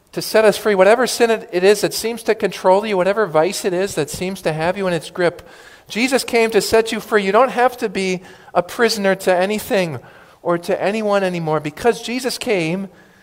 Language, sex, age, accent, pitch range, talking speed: English, male, 40-59, American, 160-220 Hz, 215 wpm